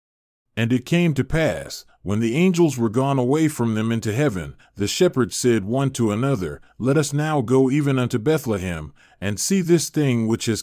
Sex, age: male, 40-59